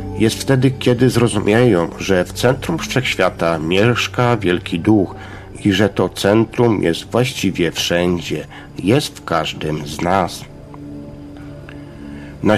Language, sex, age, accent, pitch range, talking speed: Polish, male, 50-69, native, 85-120 Hz, 115 wpm